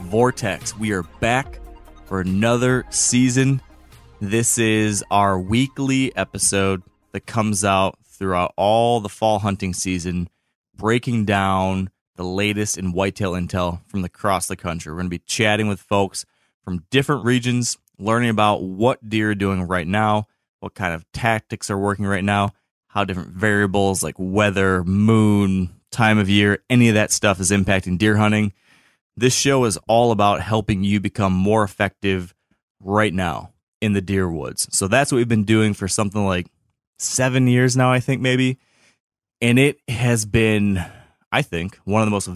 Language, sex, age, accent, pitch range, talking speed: English, male, 20-39, American, 95-115 Hz, 165 wpm